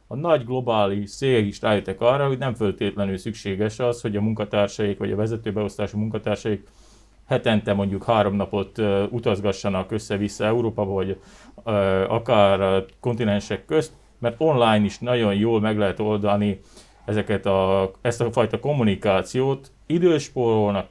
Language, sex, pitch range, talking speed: Hungarian, male, 105-125 Hz, 125 wpm